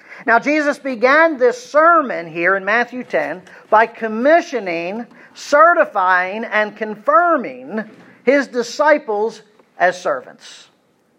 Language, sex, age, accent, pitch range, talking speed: English, male, 50-69, American, 220-275 Hz, 95 wpm